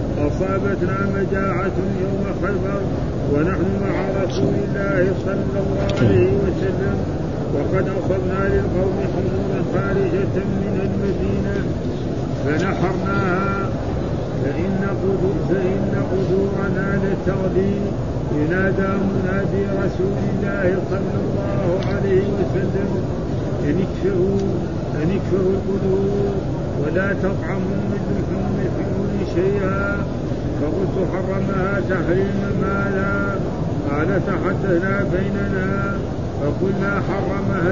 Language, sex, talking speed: Arabic, male, 80 wpm